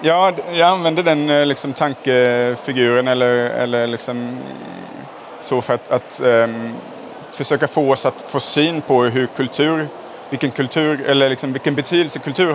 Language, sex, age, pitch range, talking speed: Swedish, male, 30-49, 120-140 Hz, 140 wpm